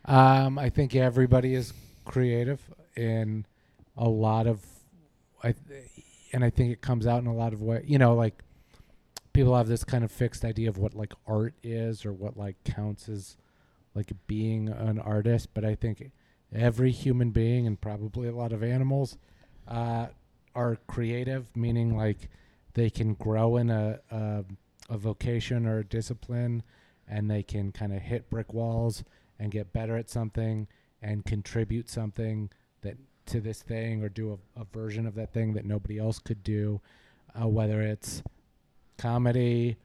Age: 40-59